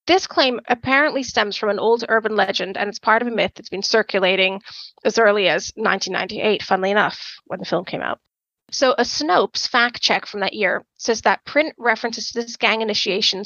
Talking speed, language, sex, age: 200 wpm, English, female, 30-49